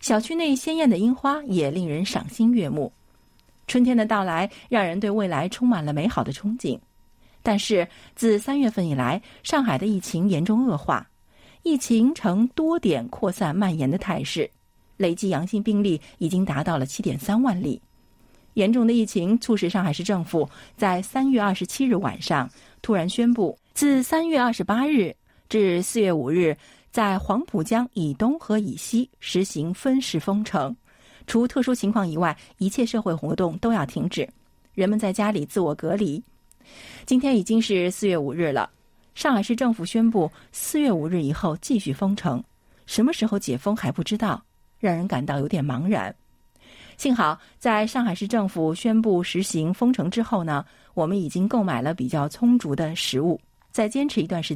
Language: Chinese